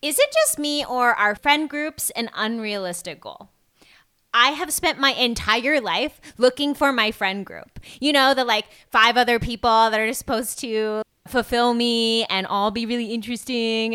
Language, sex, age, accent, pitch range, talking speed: English, female, 20-39, American, 215-295 Hz, 170 wpm